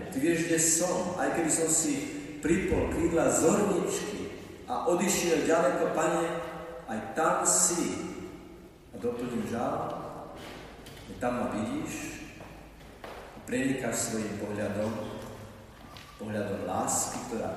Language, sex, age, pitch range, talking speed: Slovak, male, 40-59, 100-140 Hz, 110 wpm